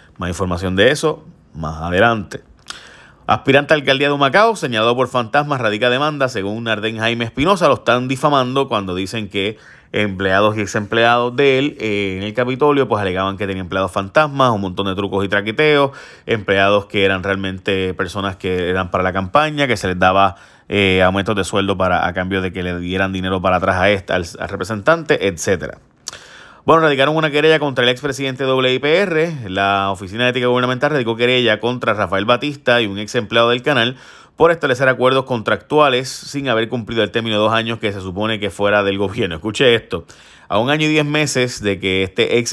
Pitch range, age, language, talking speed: 100-130 Hz, 30-49, Spanish, 195 wpm